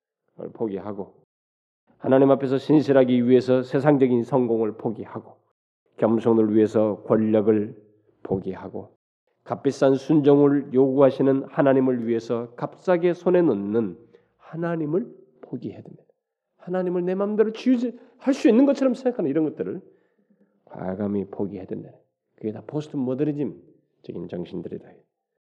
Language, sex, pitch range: Korean, male, 120-175 Hz